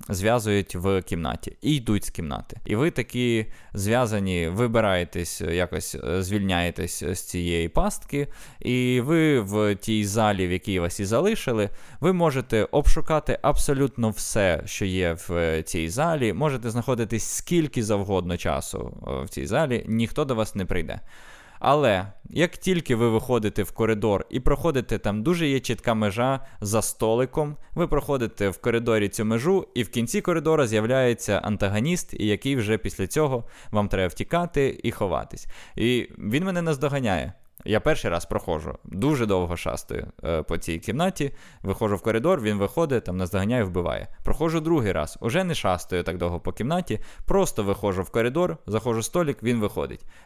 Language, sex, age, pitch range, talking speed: Ukrainian, male, 20-39, 100-140 Hz, 155 wpm